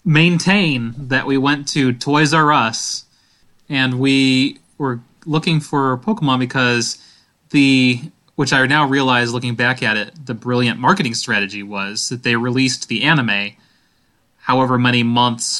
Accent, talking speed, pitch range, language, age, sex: American, 140 wpm, 120-145 Hz, English, 30-49, male